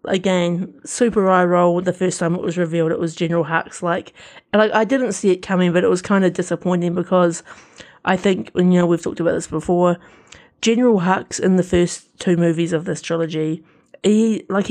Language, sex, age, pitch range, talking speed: English, female, 30-49, 170-205 Hz, 200 wpm